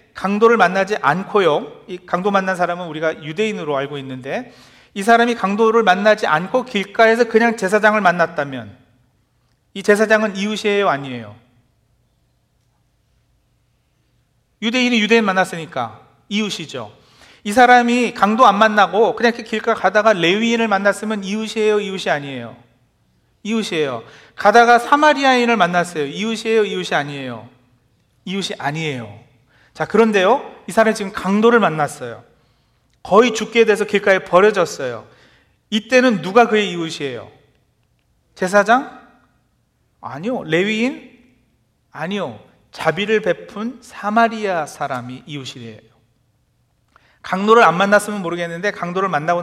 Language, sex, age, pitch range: Korean, male, 40-59, 150-220 Hz